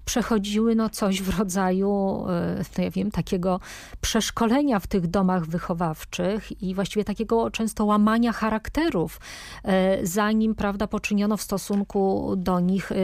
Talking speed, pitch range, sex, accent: 125 wpm, 185-225 Hz, female, native